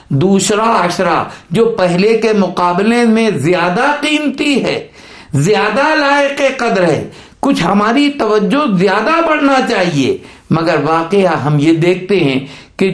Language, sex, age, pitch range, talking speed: Urdu, male, 60-79, 165-230 Hz, 125 wpm